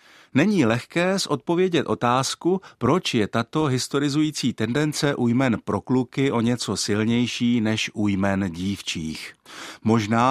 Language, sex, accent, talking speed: Czech, male, native, 120 wpm